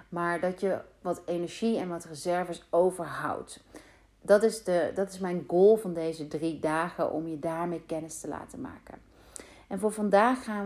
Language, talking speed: Dutch, 165 wpm